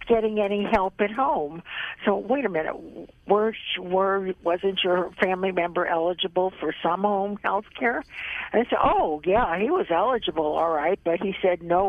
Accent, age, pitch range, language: American, 60-79, 175-215 Hz, English